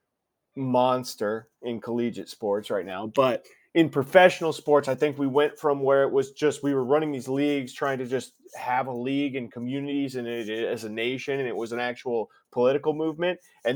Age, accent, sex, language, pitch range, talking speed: 20-39, American, male, English, 120-145 Hz, 195 wpm